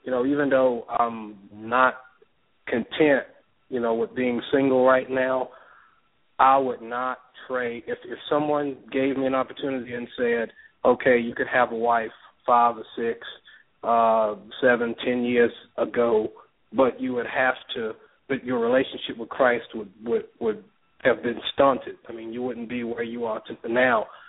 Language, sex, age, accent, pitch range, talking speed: English, male, 40-59, American, 115-130 Hz, 165 wpm